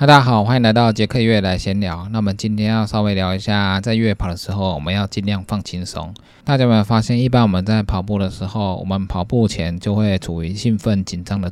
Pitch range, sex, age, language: 95-115 Hz, male, 20-39, Chinese